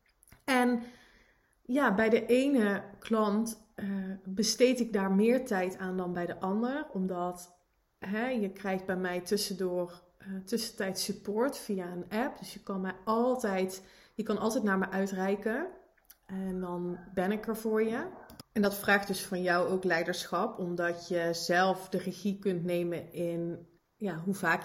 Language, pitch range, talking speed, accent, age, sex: Dutch, 180-210 Hz, 165 wpm, Dutch, 30-49, female